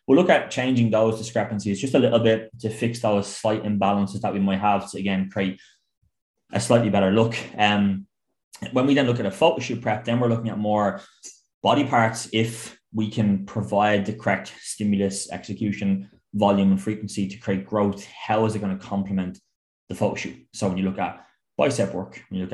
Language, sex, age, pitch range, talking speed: English, male, 20-39, 95-110 Hz, 200 wpm